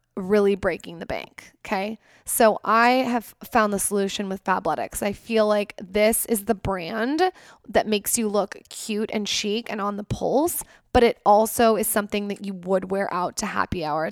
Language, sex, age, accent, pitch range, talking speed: English, female, 10-29, American, 200-230 Hz, 185 wpm